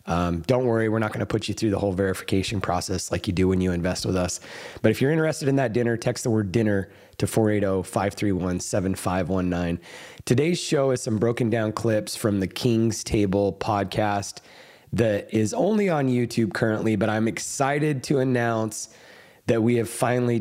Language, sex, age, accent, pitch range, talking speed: English, male, 30-49, American, 100-120 Hz, 180 wpm